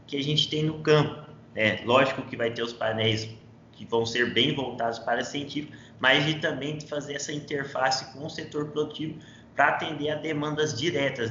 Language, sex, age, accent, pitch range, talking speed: Portuguese, male, 20-39, Brazilian, 115-135 Hz, 195 wpm